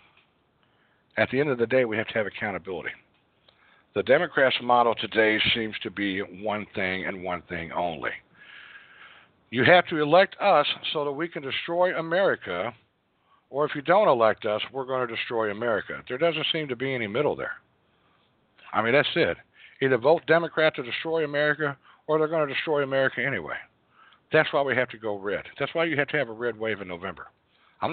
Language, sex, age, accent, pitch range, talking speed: English, male, 60-79, American, 125-185 Hz, 195 wpm